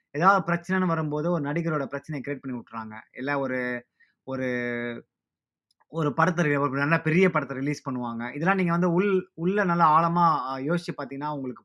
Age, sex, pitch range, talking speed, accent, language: 20-39, male, 130-170 Hz, 145 wpm, native, Tamil